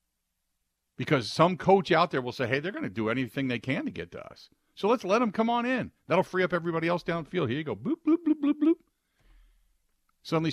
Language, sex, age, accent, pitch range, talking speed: English, male, 50-69, American, 105-170 Hz, 245 wpm